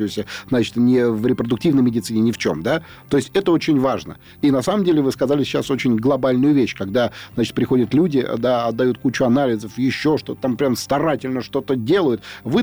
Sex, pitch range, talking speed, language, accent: male, 125-155 Hz, 190 wpm, Russian, native